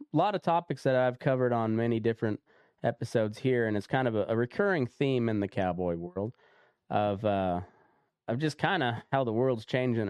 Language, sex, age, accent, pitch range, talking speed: English, male, 20-39, American, 95-125 Hz, 195 wpm